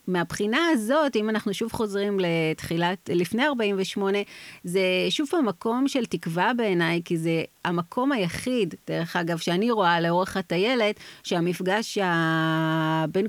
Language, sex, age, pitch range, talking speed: Hebrew, female, 30-49, 170-215 Hz, 125 wpm